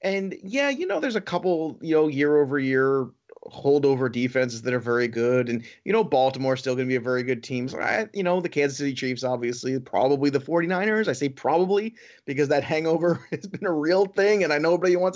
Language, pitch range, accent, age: English, 130-180 Hz, American, 30-49